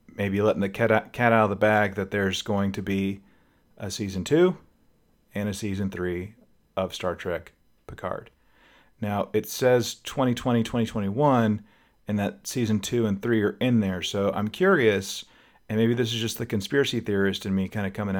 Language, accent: English, American